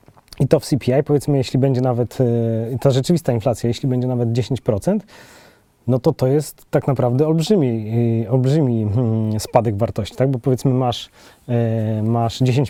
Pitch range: 115-135 Hz